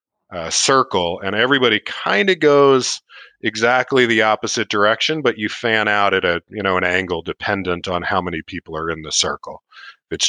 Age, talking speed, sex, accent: 40-59, 185 wpm, male, American